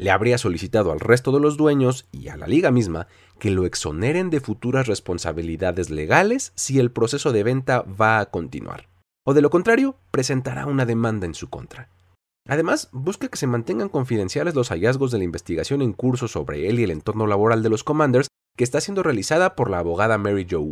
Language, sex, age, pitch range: Spanish, male, 40-59, 95-140 Hz